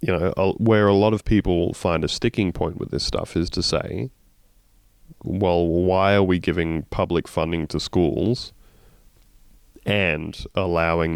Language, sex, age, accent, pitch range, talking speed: English, male, 20-39, Australian, 85-105 Hz, 155 wpm